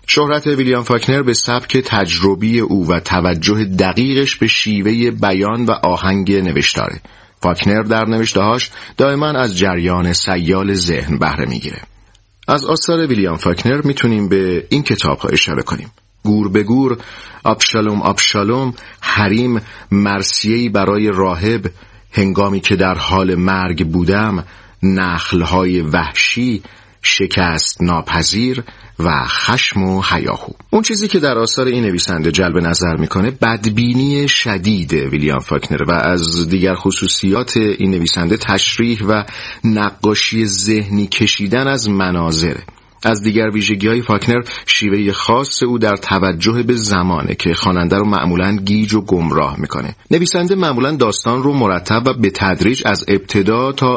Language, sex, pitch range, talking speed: Persian, male, 95-115 Hz, 130 wpm